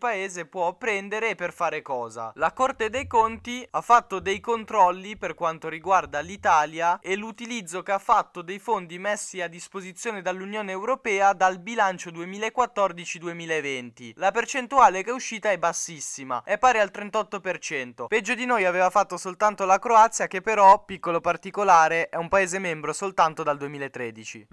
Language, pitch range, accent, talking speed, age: Italian, 140-190 Hz, native, 155 wpm, 10-29